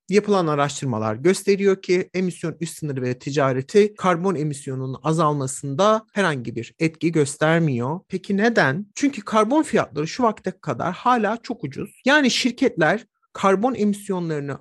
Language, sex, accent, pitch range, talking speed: Turkish, male, native, 160-230 Hz, 125 wpm